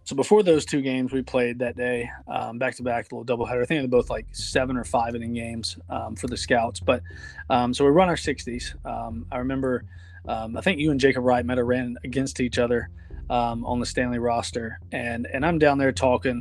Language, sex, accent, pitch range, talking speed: English, male, American, 110-135 Hz, 240 wpm